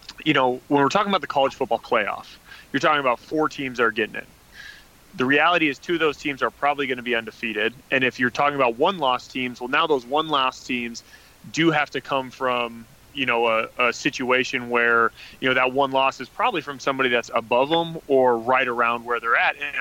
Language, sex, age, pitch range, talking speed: English, male, 30-49, 125-150 Hz, 225 wpm